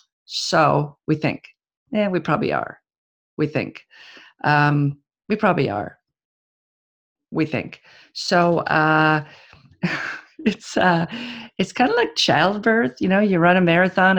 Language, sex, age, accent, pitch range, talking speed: English, female, 50-69, American, 150-180 Hz, 125 wpm